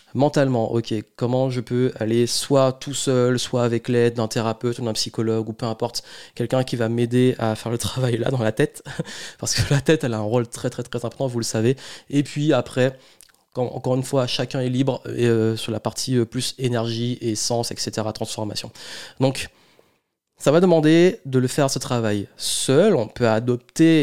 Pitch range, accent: 115-135 Hz, French